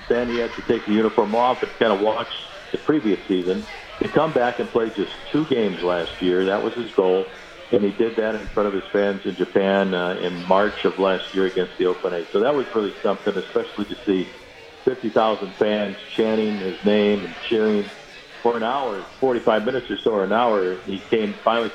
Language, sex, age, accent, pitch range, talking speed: English, male, 50-69, American, 95-110 Hz, 215 wpm